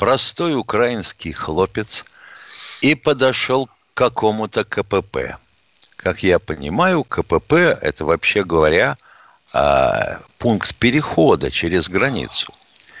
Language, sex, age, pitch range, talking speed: Russian, male, 60-79, 100-155 Hz, 90 wpm